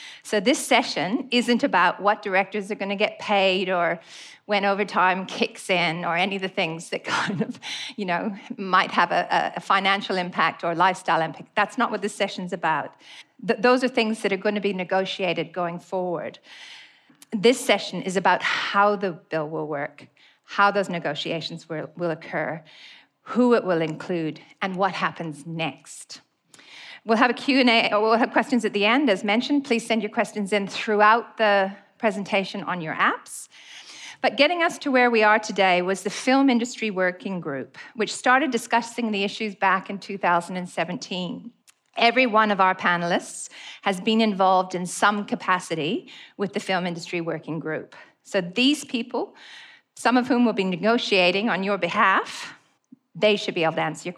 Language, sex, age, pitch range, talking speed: English, female, 40-59, 185-235 Hz, 175 wpm